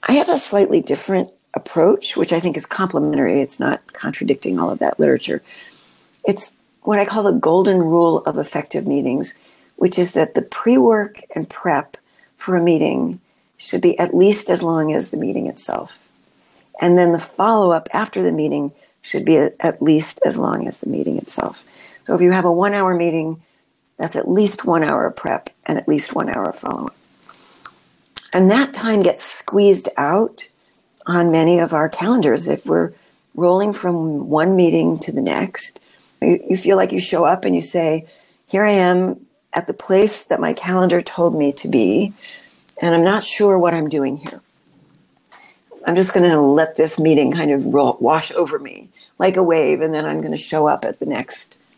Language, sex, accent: English, female, American